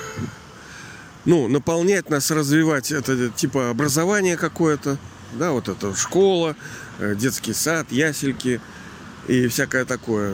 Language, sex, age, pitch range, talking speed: Russian, male, 40-59, 120-155 Hz, 105 wpm